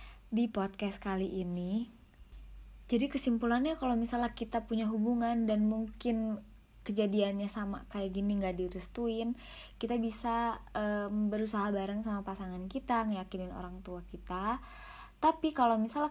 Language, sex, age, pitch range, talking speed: Indonesian, female, 20-39, 195-235 Hz, 125 wpm